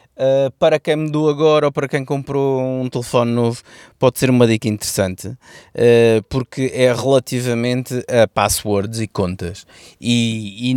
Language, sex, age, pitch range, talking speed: Portuguese, male, 20-39, 110-130 Hz, 150 wpm